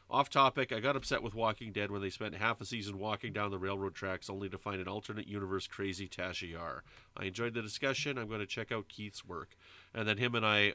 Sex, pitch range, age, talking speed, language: male, 95-125 Hz, 30-49, 250 wpm, English